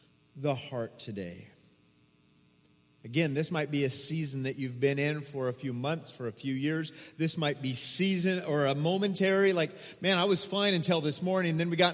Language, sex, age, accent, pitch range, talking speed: English, male, 40-59, American, 145-195 Hz, 195 wpm